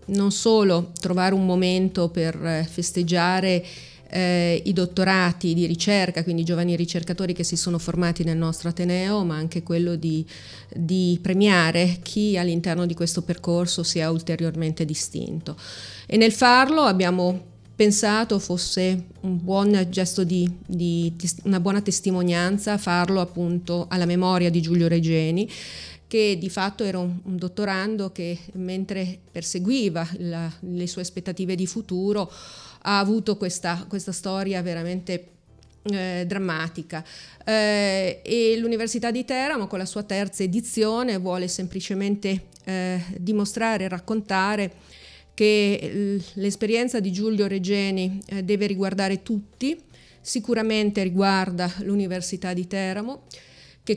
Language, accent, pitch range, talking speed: Italian, native, 175-205 Hz, 125 wpm